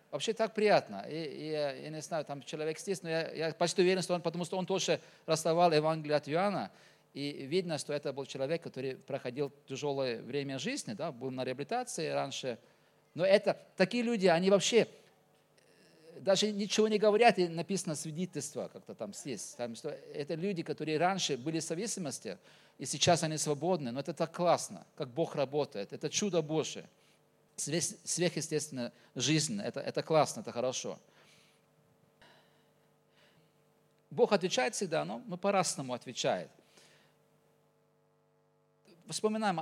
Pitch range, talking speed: 145-190 Hz, 145 wpm